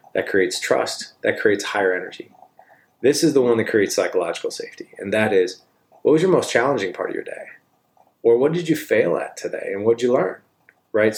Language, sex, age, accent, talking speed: English, male, 30-49, American, 215 wpm